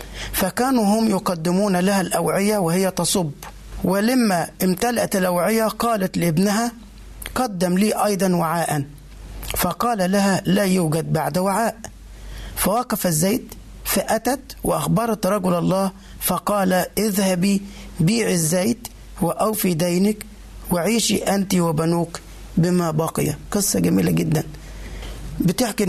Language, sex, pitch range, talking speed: Arabic, male, 165-210 Hz, 100 wpm